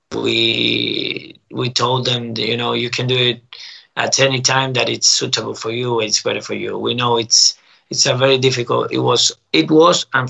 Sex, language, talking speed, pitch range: male, English, 200 wpm, 110-130 Hz